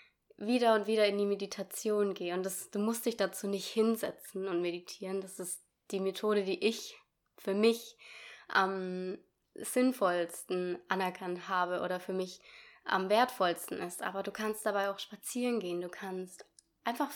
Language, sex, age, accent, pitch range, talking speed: German, female, 20-39, German, 190-230 Hz, 155 wpm